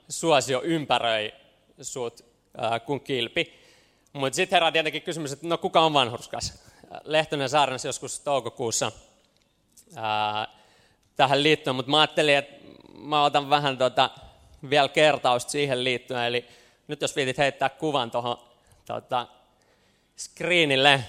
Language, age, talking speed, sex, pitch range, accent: Finnish, 20-39, 120 wpm, male, 125-155 Hz, native